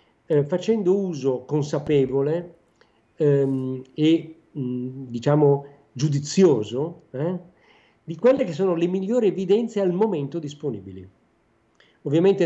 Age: 50-69